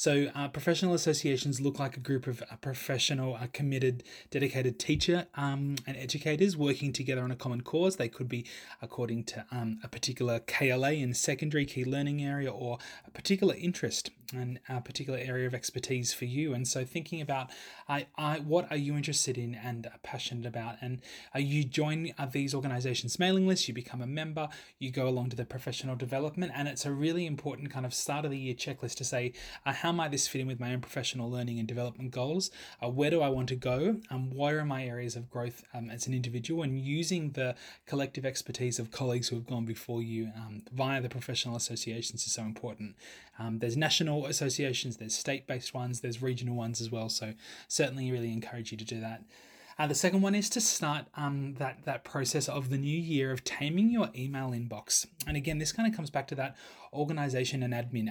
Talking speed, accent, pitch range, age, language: 210 wpm, Australian, 120-150 Hz, 20-39, English